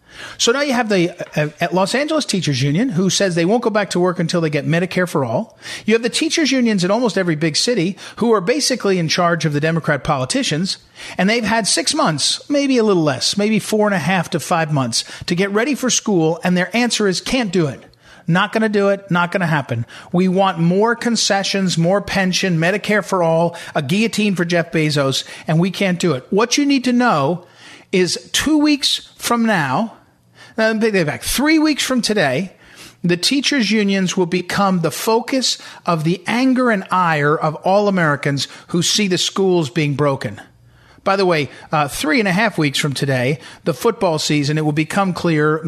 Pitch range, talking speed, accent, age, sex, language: 160-210 Hz, 200 wpm, American, 50-69, male, English